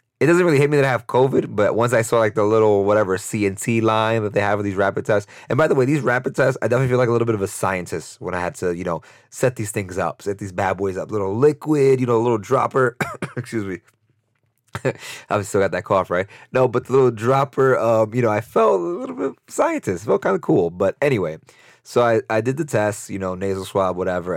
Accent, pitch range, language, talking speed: American, 95-125 Hz, English, 260 wpm